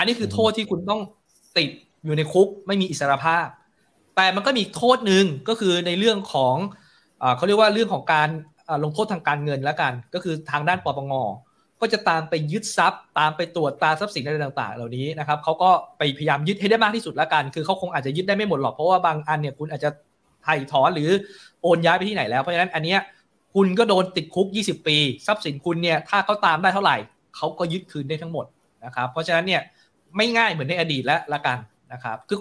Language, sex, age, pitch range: Thai, male, 20-39, 145-190 Hz